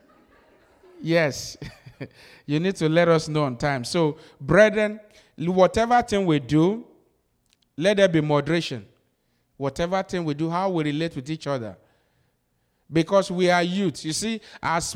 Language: English